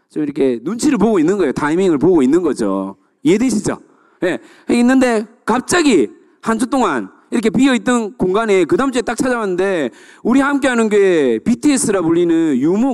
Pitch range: 200-330 Hz